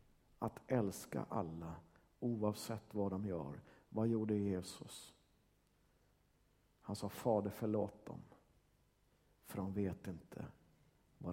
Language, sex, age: Swedish, male, 50-69